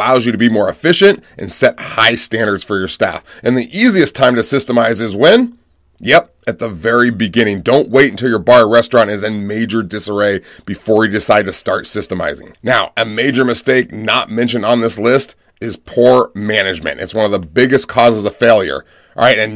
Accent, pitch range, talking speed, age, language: American, 110-135 Hz, 205 wpm, 30-49, English